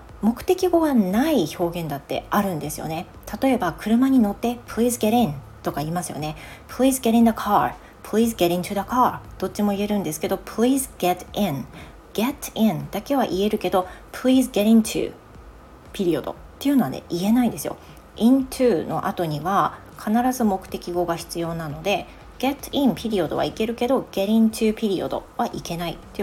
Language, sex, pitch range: Japanese, female, 150-245 Hz